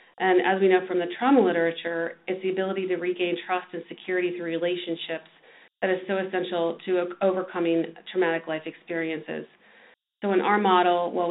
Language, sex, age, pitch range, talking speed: English, female, 40-59, 165-185 Hz, 170 wpm